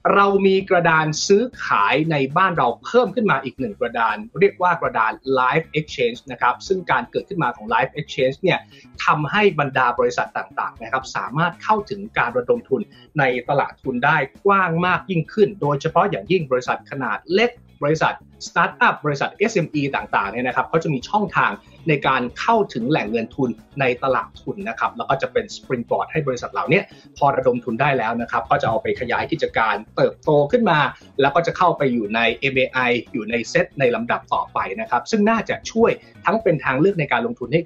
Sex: male